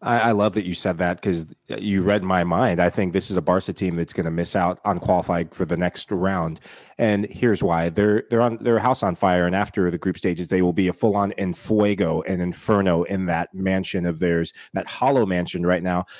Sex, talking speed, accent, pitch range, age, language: male, 235 wpm, American, 90-115 Hz, 30-49, English